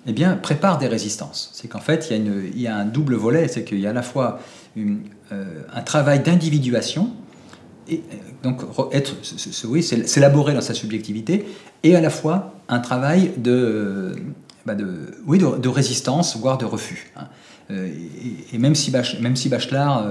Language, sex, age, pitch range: French, male, 40-59, 110-150 Hz